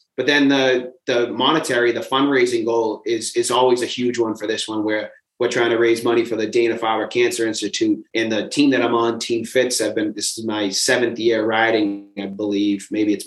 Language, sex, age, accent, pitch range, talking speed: English, male, 30-49, American, 110-130 Hz, 220 wpm